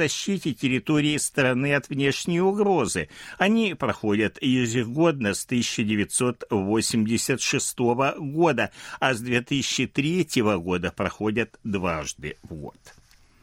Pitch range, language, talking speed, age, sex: 100-145 Hz, Russian, 90 wpm, 60-79, male